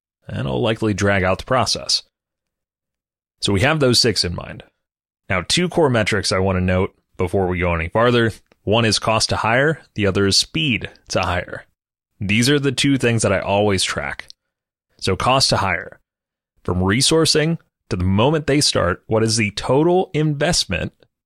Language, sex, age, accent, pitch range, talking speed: English, male, 30-49, American, 95-115 Hz, 180 wpm